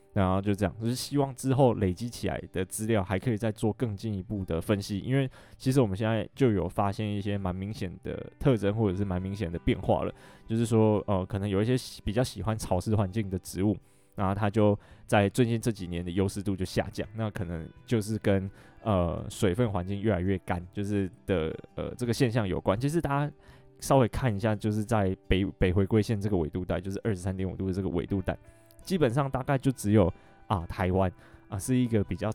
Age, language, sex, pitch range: 20-39, Chinese, male, 95-115 Hz